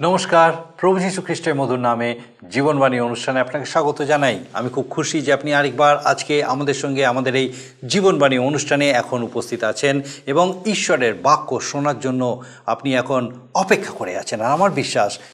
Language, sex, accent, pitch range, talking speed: Bengali, male, native, 135-185 Hz, 155 wpm